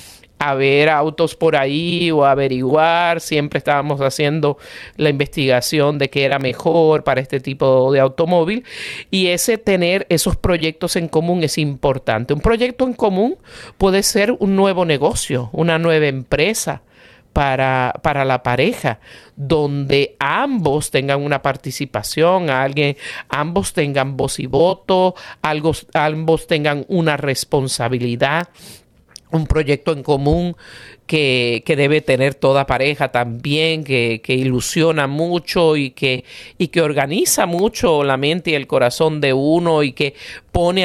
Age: 50-69